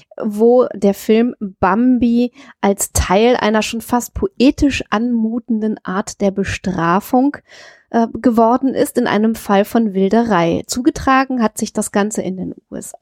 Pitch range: 195-235 Hz